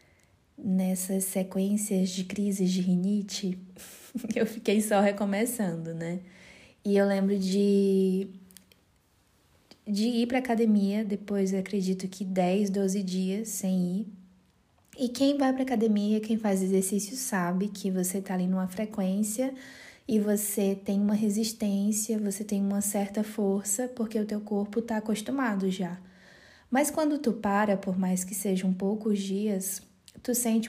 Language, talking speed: Portuguese, 145 wpm